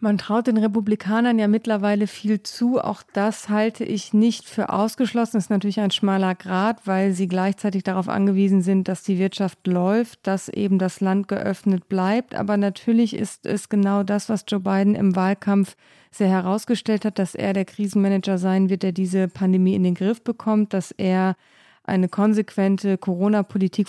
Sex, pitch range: female, 190-210 Hz